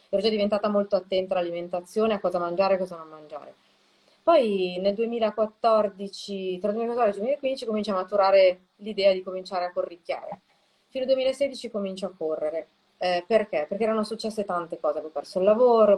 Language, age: Italian, 20-39